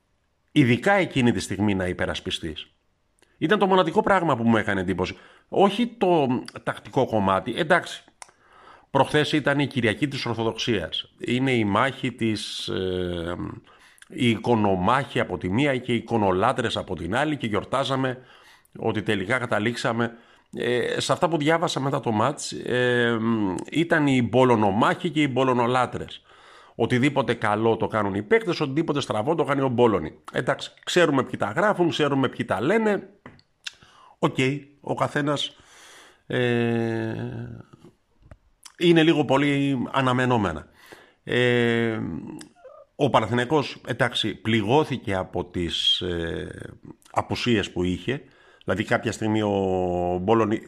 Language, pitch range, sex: Greek, 100-140 Hz, male